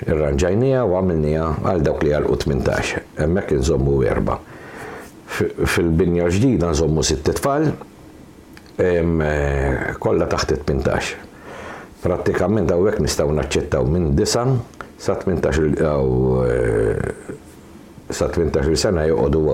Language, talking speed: English, 55 wpm